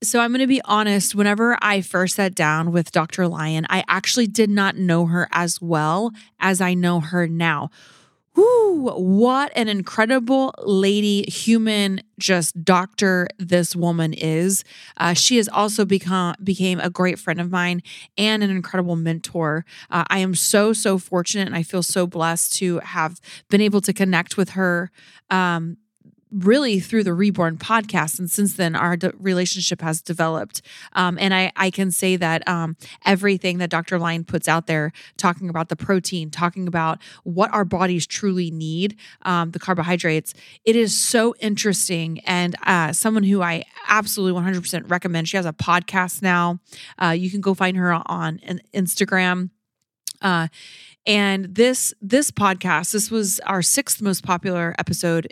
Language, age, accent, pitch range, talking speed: English, 30-49, American, 170-200 Hz, 165 wpm